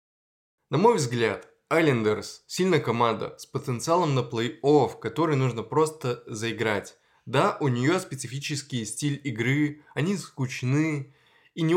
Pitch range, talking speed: 115-155 Hz, 125 wpm